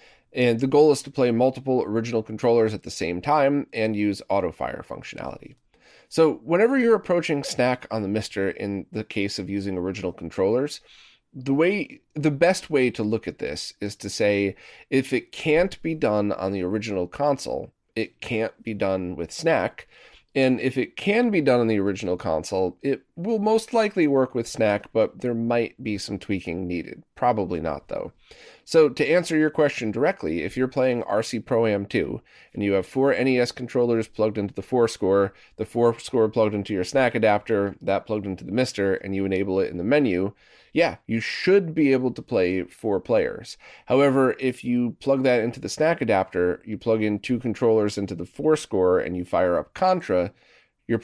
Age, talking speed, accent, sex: 30-49, 190 wpm, American, male